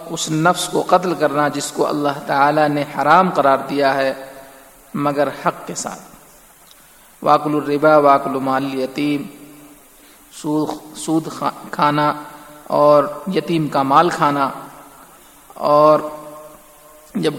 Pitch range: 145-165 Hz